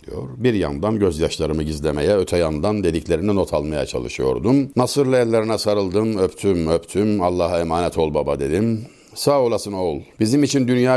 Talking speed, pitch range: 140 wpm, 105-130 Hz